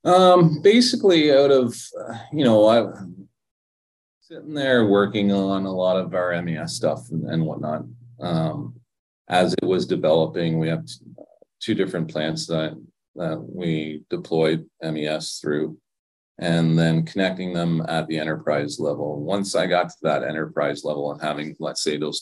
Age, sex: 30-49, male